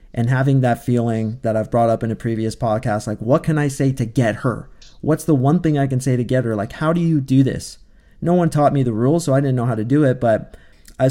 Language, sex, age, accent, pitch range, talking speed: English, male, 20-39, American, 120-155 Hz, 280 wpm